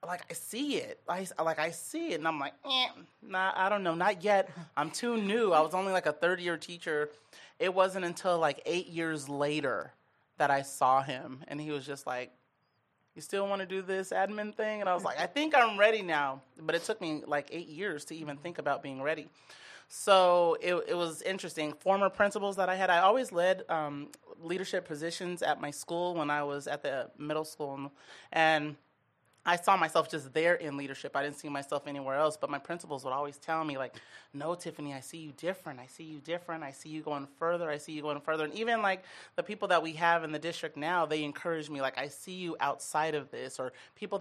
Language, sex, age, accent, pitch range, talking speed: English, male, 30-49, American, 145-175 Hz, 225 wpm